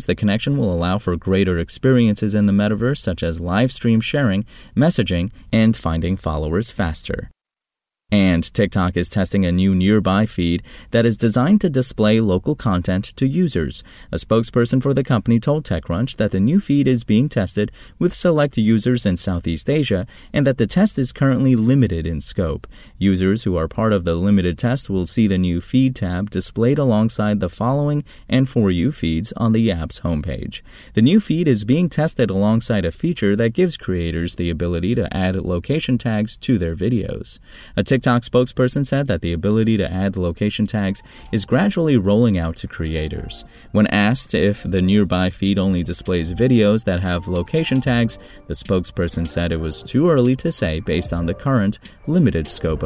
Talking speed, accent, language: 180 wpm, American, English